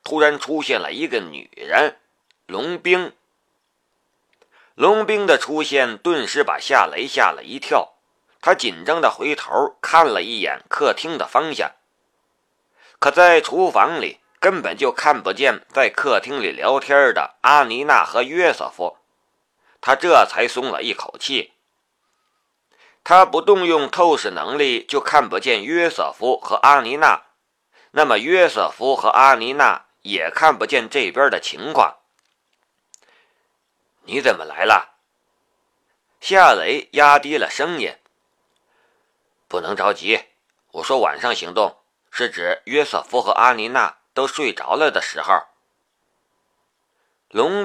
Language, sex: Chinese, male